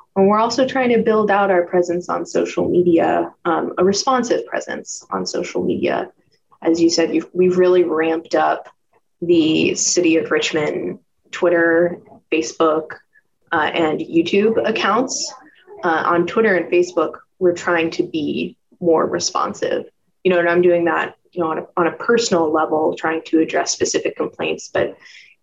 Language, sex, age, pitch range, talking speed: English, female, 20-39, 165-200 Hz, 165 wpm